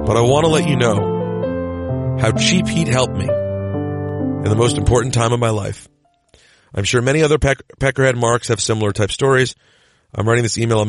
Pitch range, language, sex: 105-120 Hz, English, male